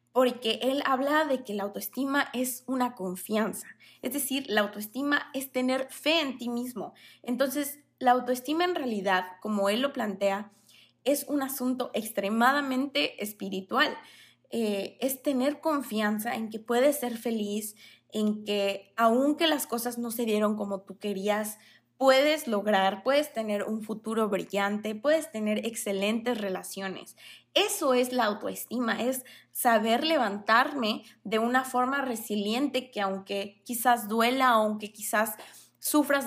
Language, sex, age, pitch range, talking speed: Spanish, female, 20-39, 210-265 Hz, 135 wpm